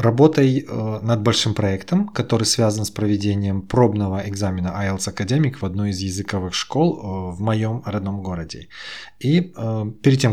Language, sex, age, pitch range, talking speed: Russian, male, 20-39, 100-125 Hz, 140 wpm